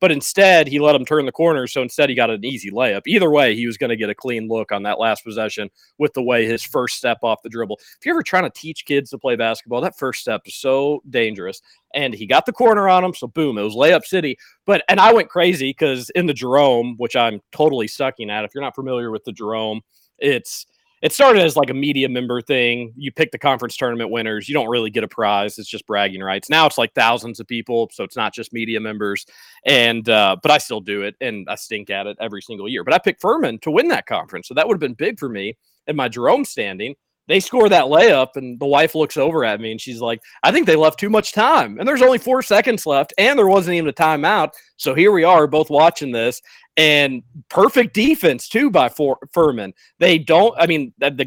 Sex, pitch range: male, 115-160 Hz